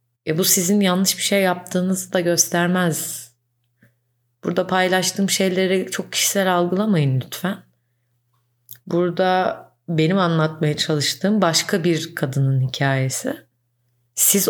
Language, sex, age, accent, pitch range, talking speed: Turkish, female, 30-49, native, 120-185 Hz, 105 wpm